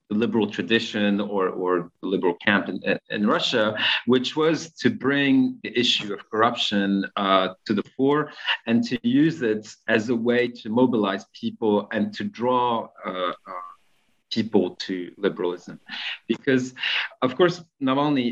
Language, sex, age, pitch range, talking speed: English, male, 40-59, 105-130 Hz, 150 wpm